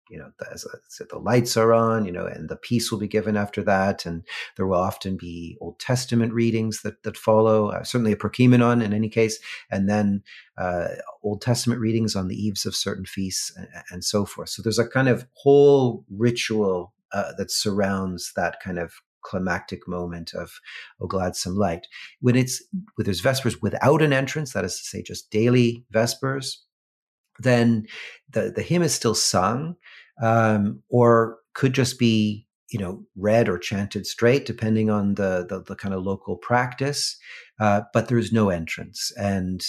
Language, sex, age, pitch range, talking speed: English, male, 40-59, 95-120 Hz, 185 wpm